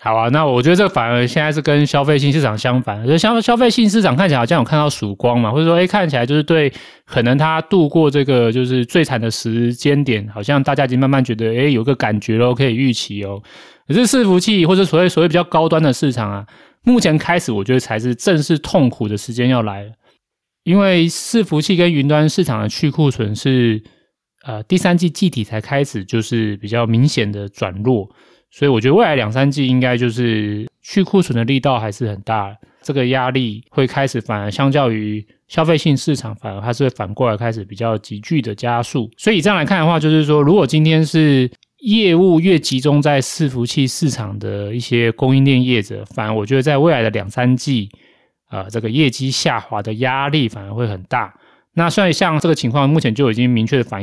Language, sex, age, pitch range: Chinese, male, 30-49, 115-155 Hz